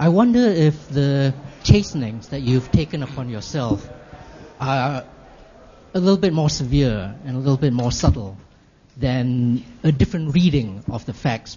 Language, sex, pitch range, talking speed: English, male, 125-155 Hz, 155 wpm